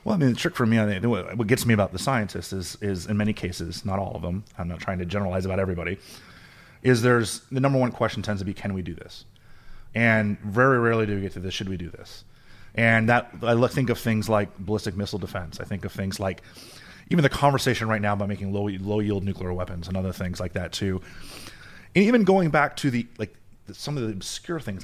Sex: male